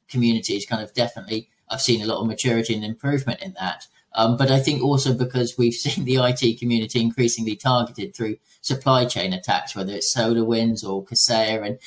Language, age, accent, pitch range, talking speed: English, 30-49, British, 115-135 Hz, 185 wpm